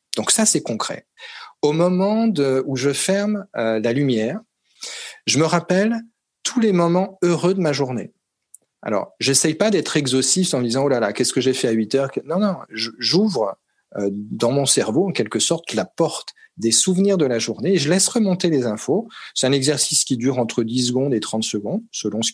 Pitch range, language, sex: 125-175 Hz, French, male